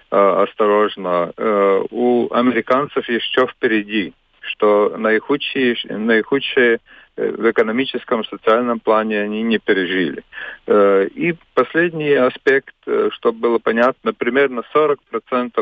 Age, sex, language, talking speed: 40-59, male, Russian, 90 wpm